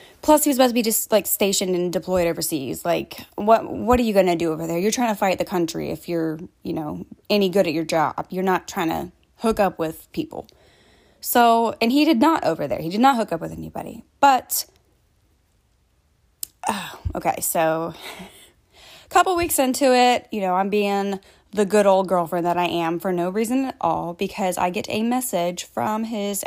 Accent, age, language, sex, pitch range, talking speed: American, 10-29, English, female, 175-230 Hz, 205 wpm